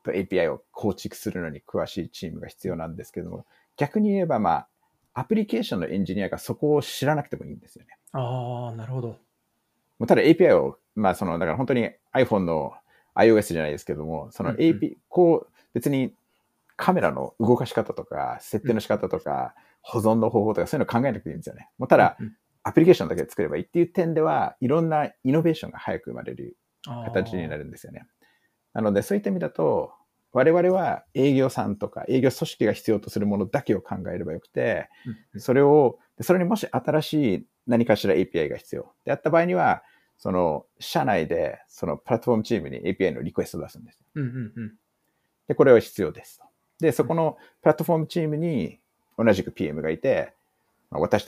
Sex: male